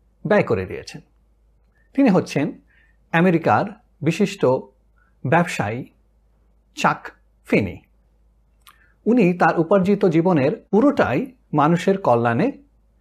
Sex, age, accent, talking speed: male, 60-79, native, 80 wpm